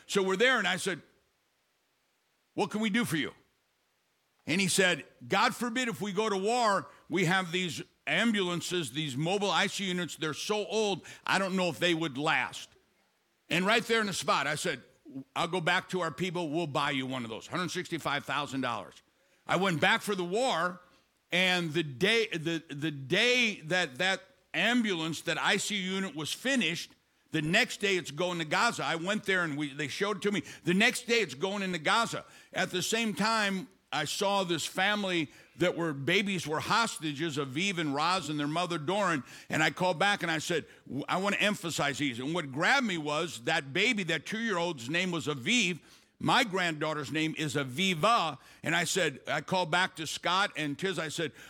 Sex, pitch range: male, 160-200 Hz